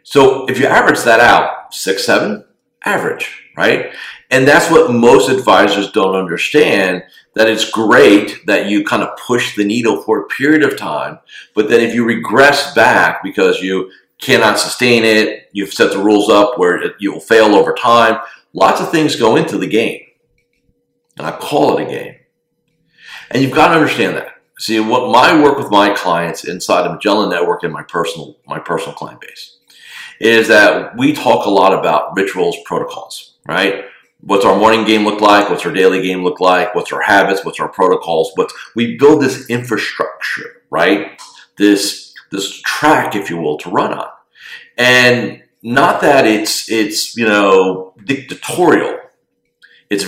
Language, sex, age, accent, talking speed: English, male, 50-69, American, 170 wpm